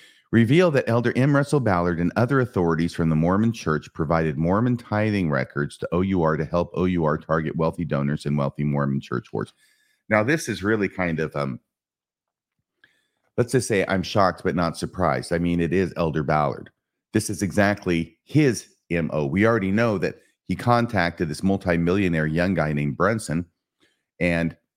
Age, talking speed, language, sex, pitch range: 40-59, 165 wpm, English, male, 80-105 Hz